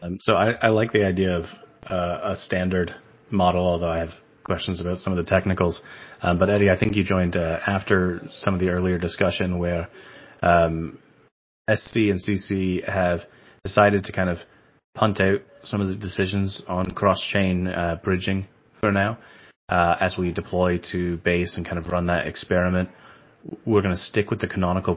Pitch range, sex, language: 85-100 Hz, male, English